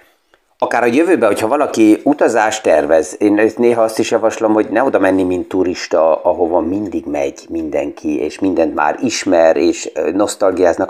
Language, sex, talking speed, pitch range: Hungarian, male, 155 wpm, 95-115 Hz